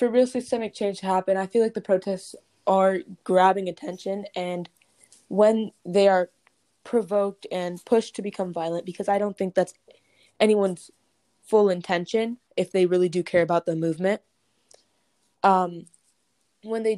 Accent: American